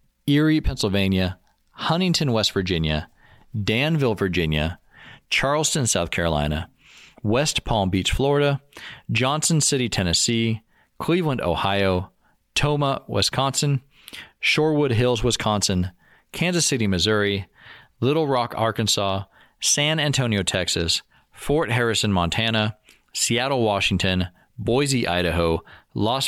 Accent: American